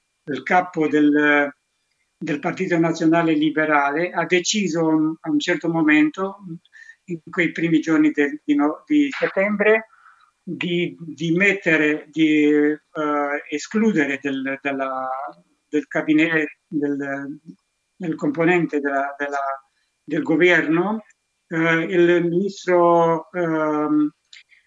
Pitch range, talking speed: 150-175 Hz, 80 wpm